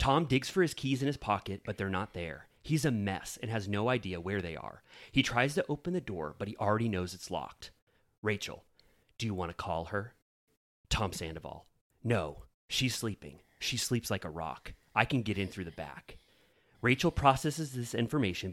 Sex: male